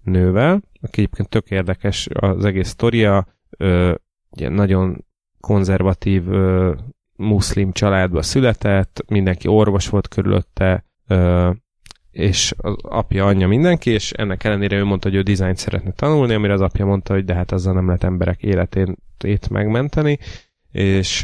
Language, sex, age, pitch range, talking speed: Hungarian, male, 20-39, 95-105 Hz, 135 wpm